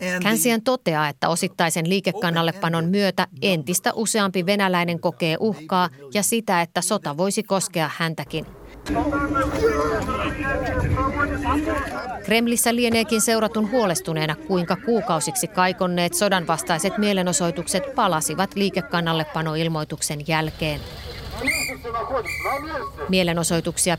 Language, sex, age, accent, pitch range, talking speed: Finnish, female, 30-49, native, 160-195 Hz, 80 wpm